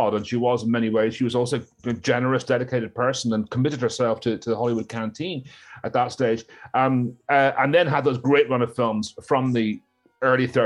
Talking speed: 210 wpm